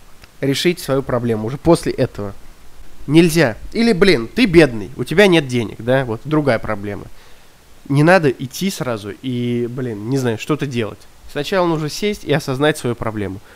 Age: 20-39